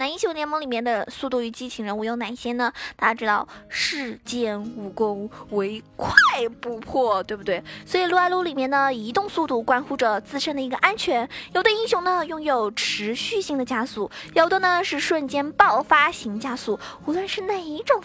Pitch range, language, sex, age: 240-330 Hz, Chinese, female, 20-39